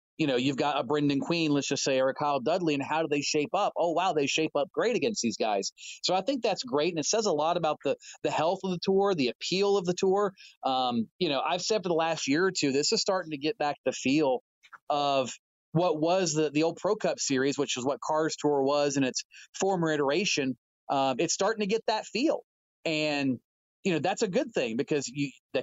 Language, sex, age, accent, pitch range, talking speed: English, male, 30-49, American, 145-185 Hz, 250 wpm